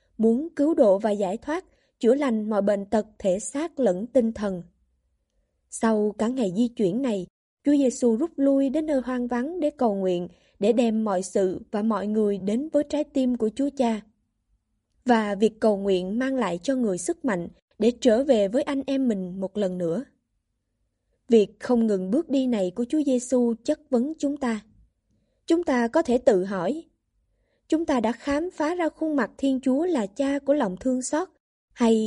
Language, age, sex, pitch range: Vietnamese, 20-39, female, 210-275 Hz